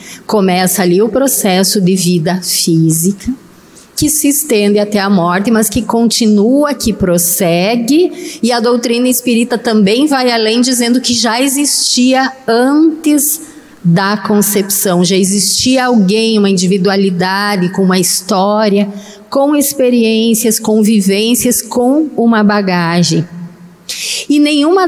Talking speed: 120 wpm